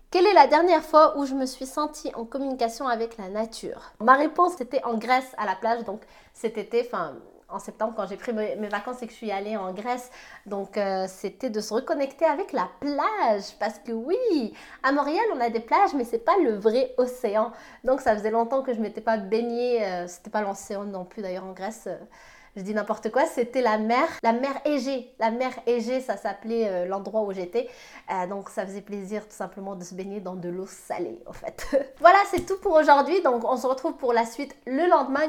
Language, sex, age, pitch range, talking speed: English, female, 20-39, 210-275 Hz, 225 wpm